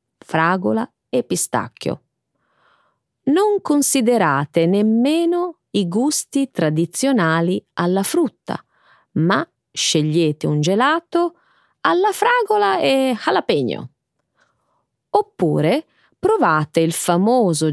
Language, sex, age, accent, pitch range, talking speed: Italian, female, 30-49, native, 160-275 Hz, 80 wpm